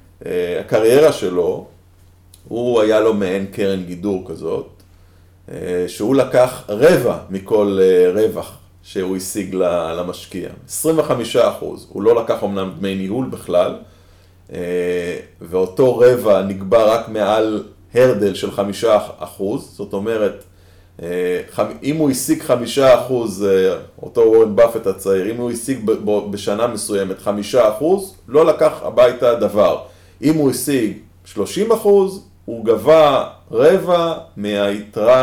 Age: 30-49